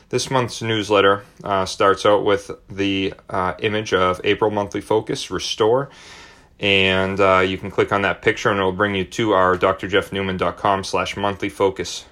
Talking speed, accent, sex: 165 wpm, American, male